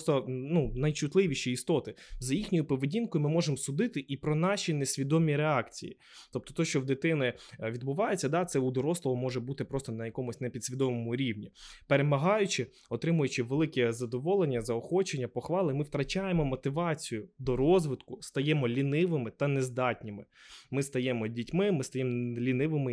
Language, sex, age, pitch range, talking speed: Ukrainian, male, 20-39, 120-155 Hz, 140 wpm